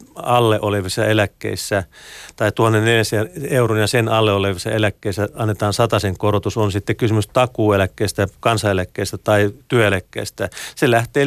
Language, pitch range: Finnish, 100-115 Hz